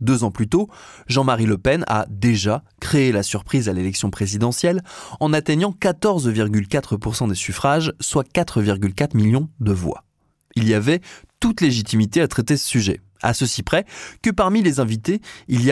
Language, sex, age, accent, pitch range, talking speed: French, male, 20-39, French, 110-150 Hz, 165 wpm